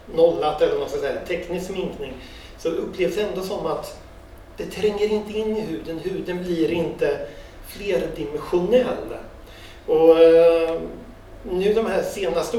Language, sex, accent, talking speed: Swedish, male, native, 135 wpm